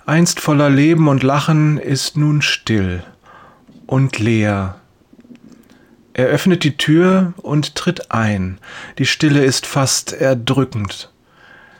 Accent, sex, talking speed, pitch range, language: German, male, 110 wpm, 115-150 Hz, German